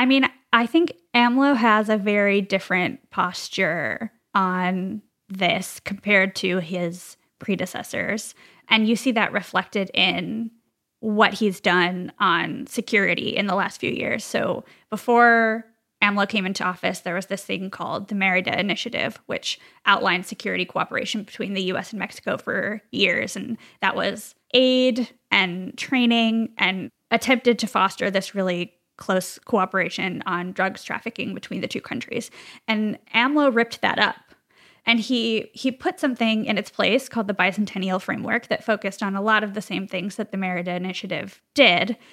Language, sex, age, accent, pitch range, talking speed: English, female, 10-29, American, 185-230 Hz, 155 wpm